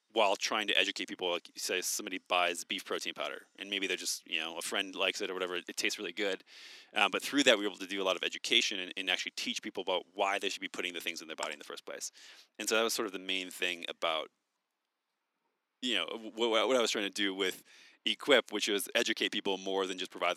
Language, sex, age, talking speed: English, male, 30-49, 265 wpm